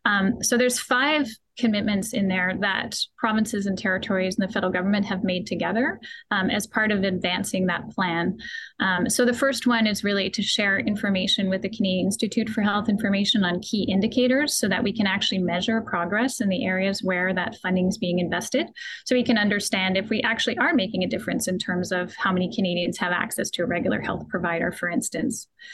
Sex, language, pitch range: female, English, 190-235 Hz